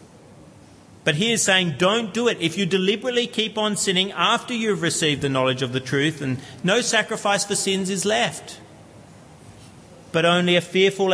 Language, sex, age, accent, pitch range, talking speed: English, male, 40-59, Australian, 135-185 Hz, 170 wpm